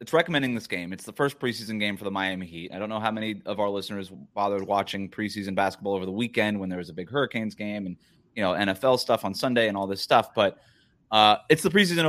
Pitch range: 95-120 Hz